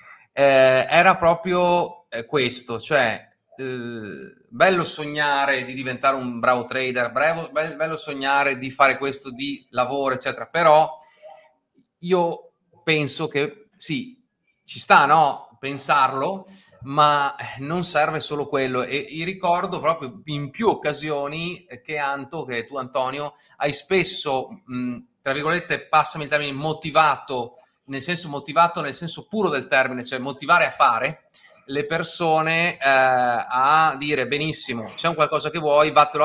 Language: Italian